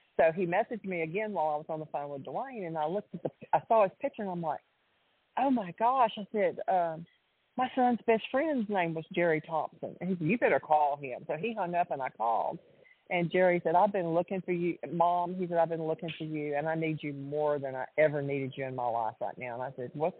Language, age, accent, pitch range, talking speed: English, 40-59, American, 145-180 Hz, 260 wpm